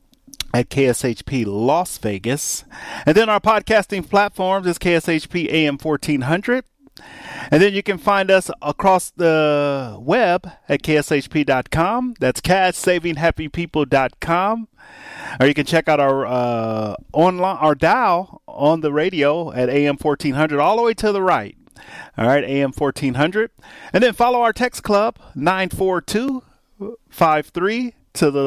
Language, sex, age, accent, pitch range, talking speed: English, male, 30-49, American, 140-205 Hz, 125 wpm